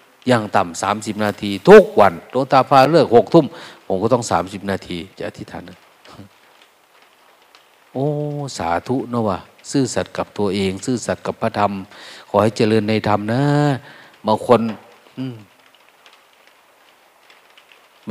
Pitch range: 100-140 Hz